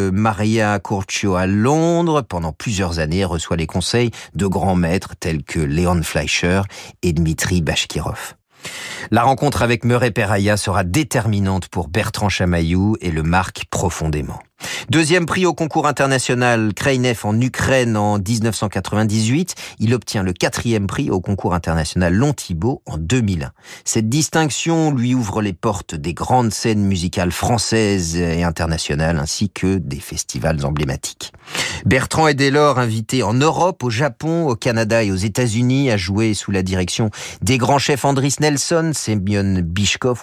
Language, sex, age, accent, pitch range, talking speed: French, male, 40-59, French, 90-125 Hz, 150 wpm